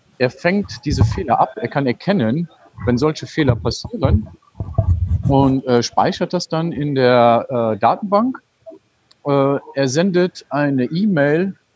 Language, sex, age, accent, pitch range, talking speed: German, male, 40-59, German, 125-165 Hz, 135 wpm